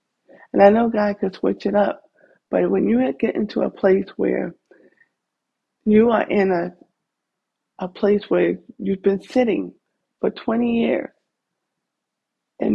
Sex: female